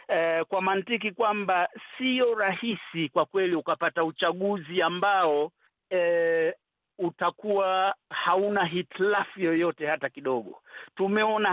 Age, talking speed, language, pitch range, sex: 50-69, 95 wpm, Swahili, 160-200 Hz, male